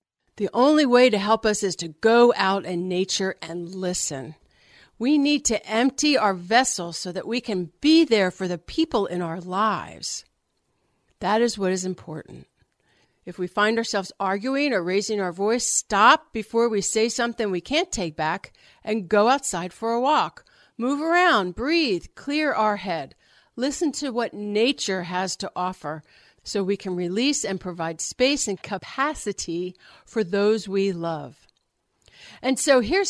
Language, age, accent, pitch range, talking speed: English, 50-69, American, 185-255 Hz, 165 wpm